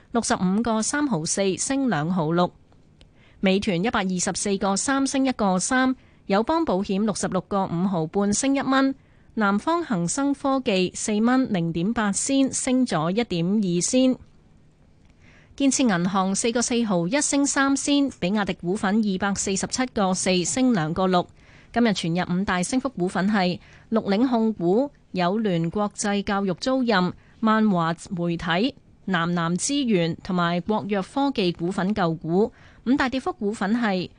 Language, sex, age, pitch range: Chinese, female, 20-39, 180-240 Hz